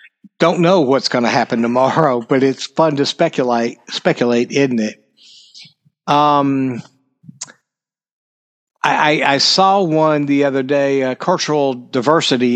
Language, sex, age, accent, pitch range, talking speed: English, male, 60-79, American, 125-155 Hz, 125 wpm